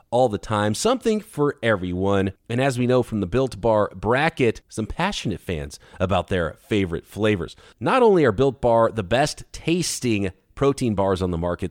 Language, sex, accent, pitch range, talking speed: English, male, American, 100-150 Hz, 180 wpm